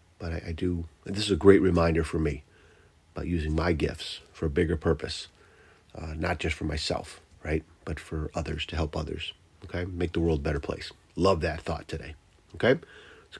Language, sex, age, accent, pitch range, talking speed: English, male, 40-59, American, 80-90 Hz, 200 wpm